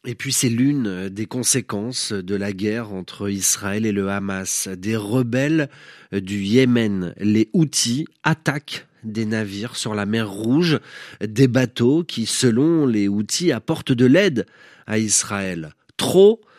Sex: male